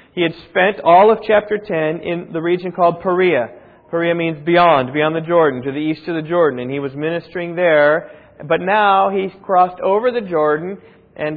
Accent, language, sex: American, English, male